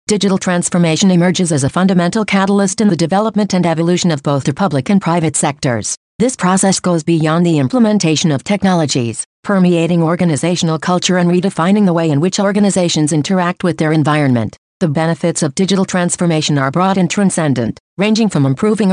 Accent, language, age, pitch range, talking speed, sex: American, English, 50-69, 160-195 Hz, 170 wpm, female